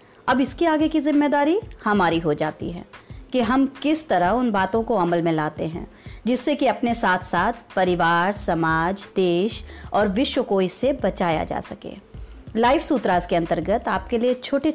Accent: native